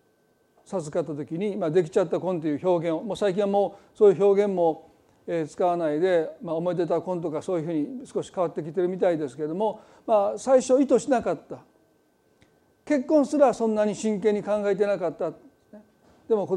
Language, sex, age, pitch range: Japanese, male, 40-59, 175-235 Hz